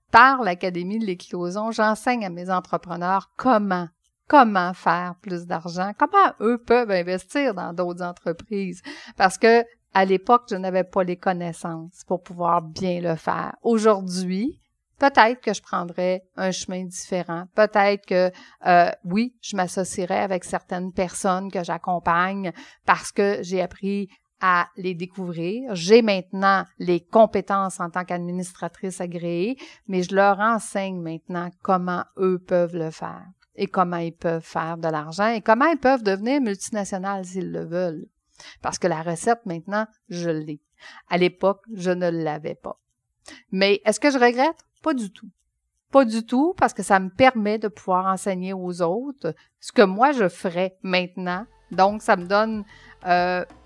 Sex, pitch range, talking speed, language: female, 180-215 Hz, 155 wpm, French